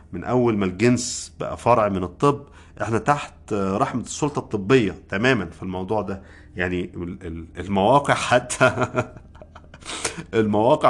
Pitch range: 90-125 Hz